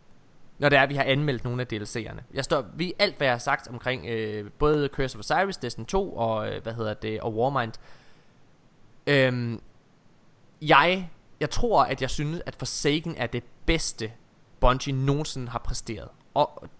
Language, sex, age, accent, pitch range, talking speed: Danish, male, 20-39, native, 120-165 Hz, 175 wpm